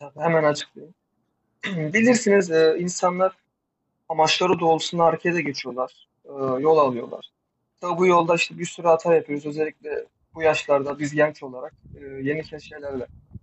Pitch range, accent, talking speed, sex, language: 145-175 Hz, native, 115 wpm, male, Turkish